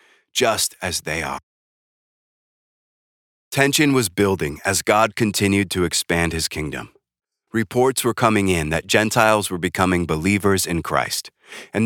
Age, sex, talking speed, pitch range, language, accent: 30-49, male, 130 wpm, 85-110 Hz, English, American